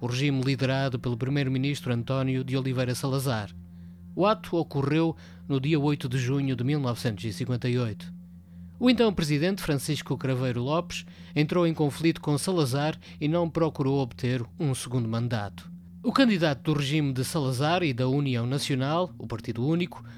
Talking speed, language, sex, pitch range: 150 wpm, Portuguese, male, 120-155 Hz